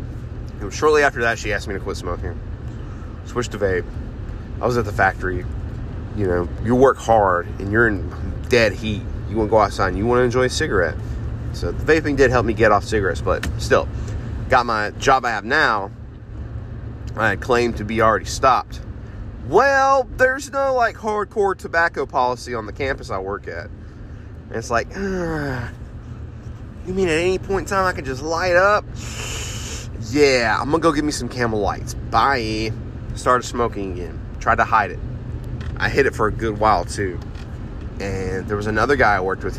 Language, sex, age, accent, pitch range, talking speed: English, male, 30-49, American, 100-120 Hz, 190 wpm